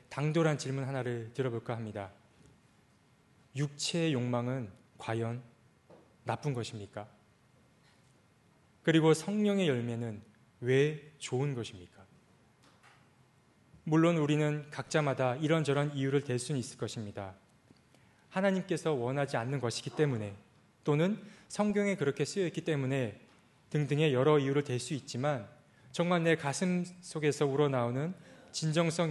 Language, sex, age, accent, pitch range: Korean, male, 20-39, native, 125-165 Hz